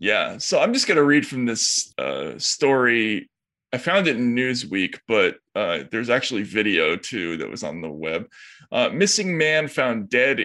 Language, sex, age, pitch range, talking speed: English, male, 20-39, 115-140 Hz, 185 wpm